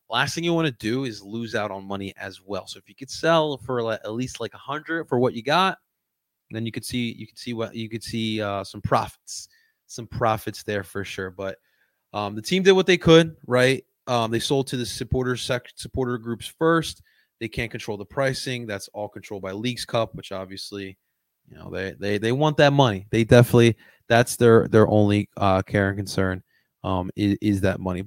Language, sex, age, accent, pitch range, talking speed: English, male, 20-39, American, 110-145 Hz, 215 wpm